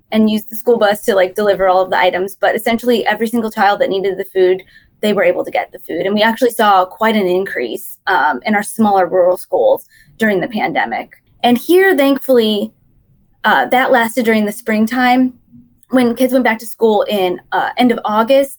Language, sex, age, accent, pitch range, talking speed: English, female, 20-39, American, 205-255 Hz, 205 wpm